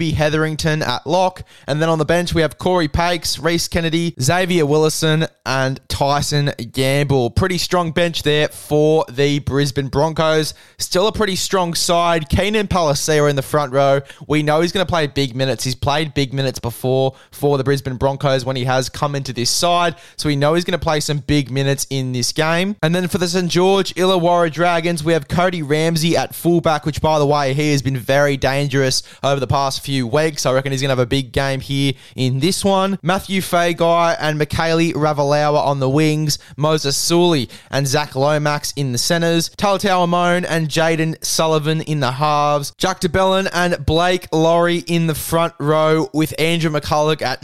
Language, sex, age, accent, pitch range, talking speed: English, male, 20-39, Australian, 140-170 Hz, 195 wpm